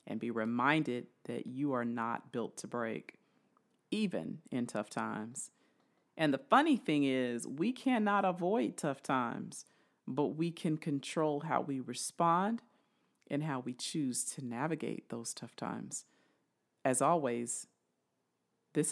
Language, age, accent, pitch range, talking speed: English, 40-59, American, 125-185 Hz, 135 wpm